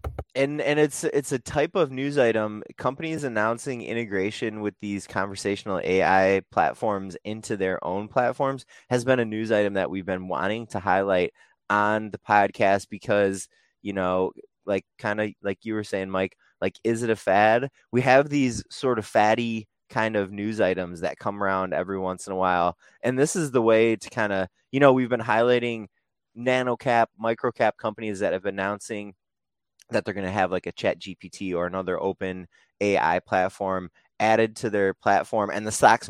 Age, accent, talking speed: 20-39, American, 185 wpm